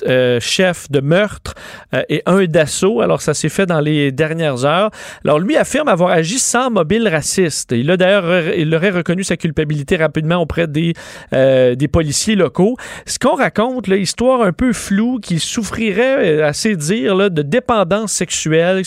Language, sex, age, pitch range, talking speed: French, male, 40-59, 145-190 Hz, 170 wpm